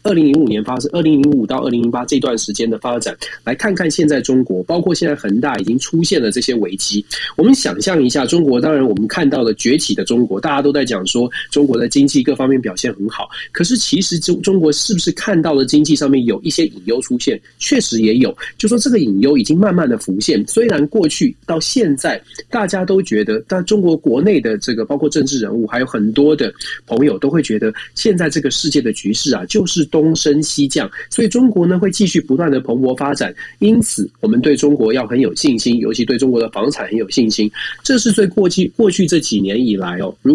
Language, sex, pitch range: Chinese, male, 130-200 Hz